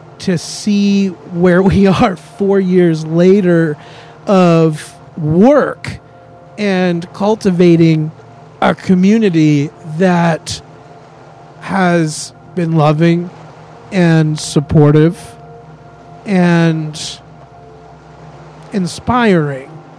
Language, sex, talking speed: English, male, 65 wpm